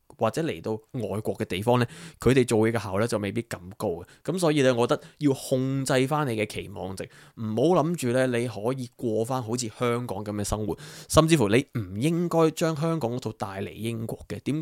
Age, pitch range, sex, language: 20-39, 105-140 Hz, male, Chinese